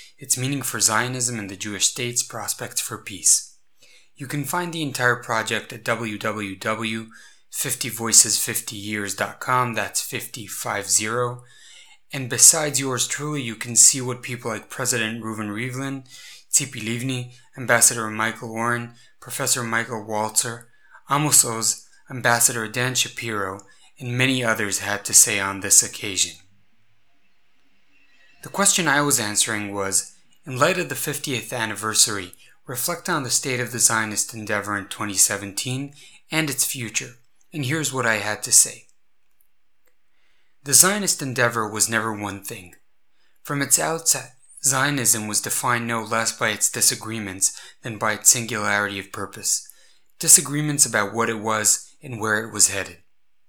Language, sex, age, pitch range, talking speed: English, male, 20-39, 110-130 Hz, 135 wpm